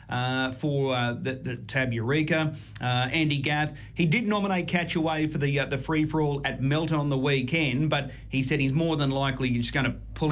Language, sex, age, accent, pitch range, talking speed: English, male, 30-49, Australian, 125-150 Hz, 210 wpm